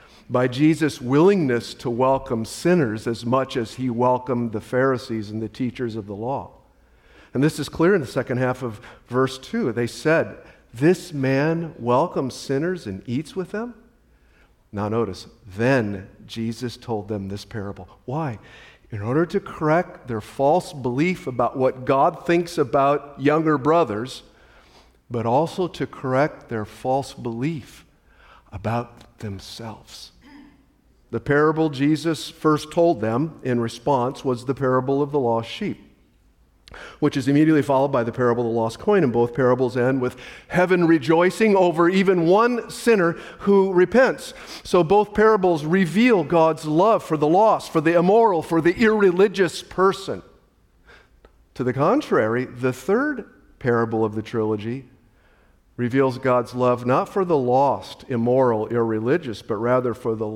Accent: American